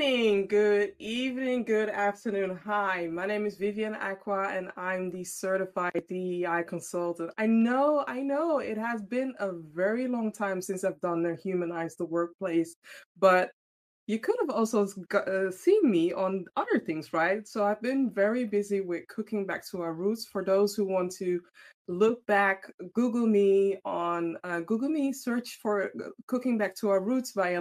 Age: 20-39